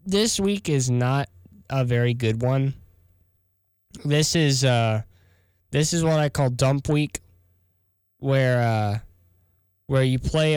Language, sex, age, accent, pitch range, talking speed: English, male, 10-29, American, 95-145 Hz, 130 wpm